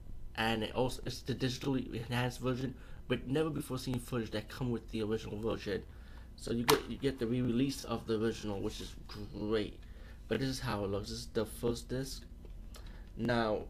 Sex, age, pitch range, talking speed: male, 20-39, 105-125 Hz, 195 wpm